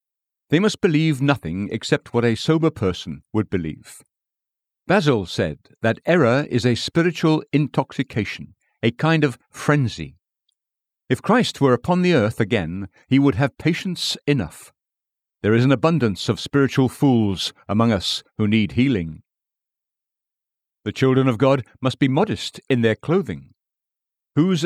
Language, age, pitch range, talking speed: English, 60-79, 105-140 Hz, 140 wpm